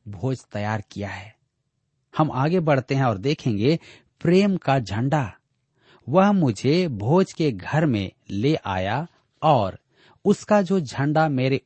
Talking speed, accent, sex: 135 wpm, native, male